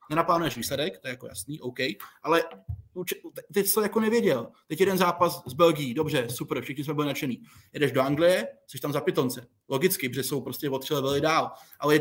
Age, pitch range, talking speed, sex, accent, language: 20-39, 145-180 Hz, 190 wpm, male, native, Czech